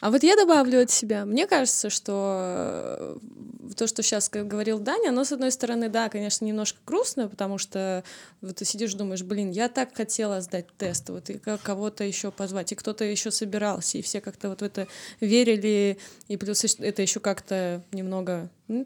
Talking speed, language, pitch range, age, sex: 185 wpm, Russian, 195-225 Hz, 20-39, female